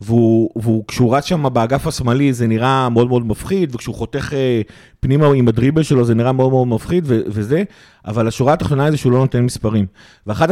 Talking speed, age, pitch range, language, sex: 195 wpm, 30-49, 120-145 Hz, Hebrew, male